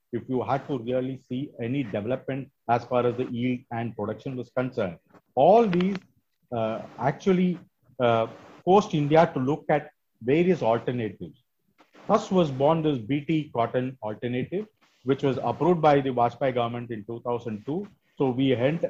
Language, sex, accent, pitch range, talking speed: English, male, Indian, 120-150 Hz, 145 wpm